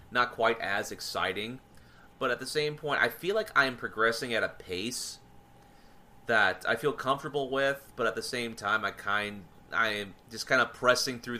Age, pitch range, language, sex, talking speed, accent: 30-49, 100-125 Hz, English, male, 195 wpm, American